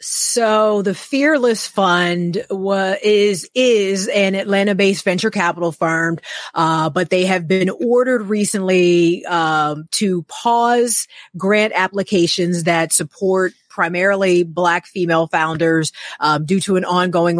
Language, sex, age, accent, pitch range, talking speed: English, female, 30-49, American, 160-190 Hz, 120 wpm